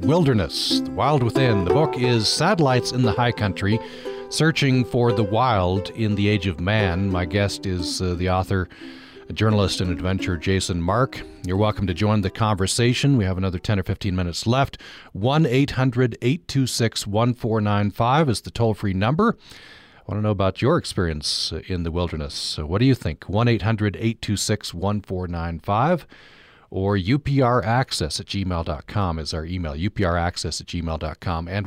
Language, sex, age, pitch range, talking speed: English, male, 40-59, 95-120 Hz, 160 wpm